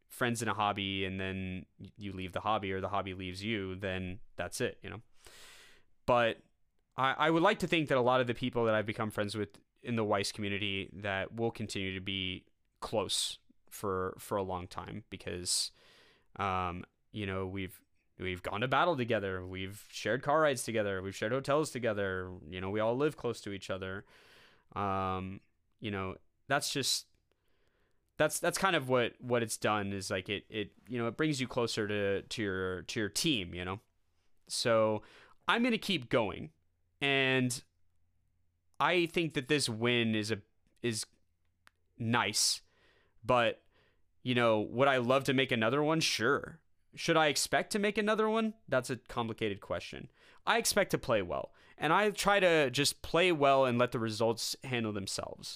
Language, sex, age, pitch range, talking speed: English, male, 20-39, 95-135 Hz, 180 wpm